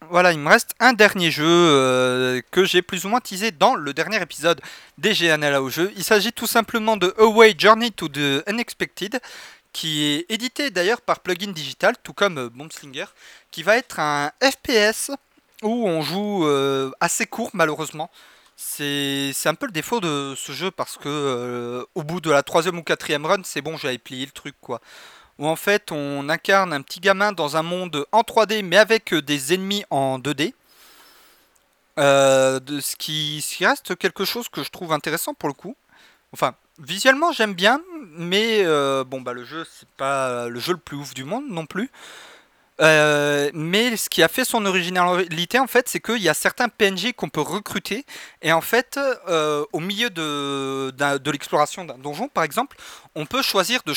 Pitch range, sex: 145-210 Hz, male